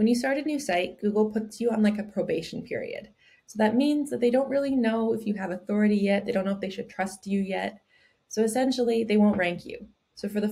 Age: 20-39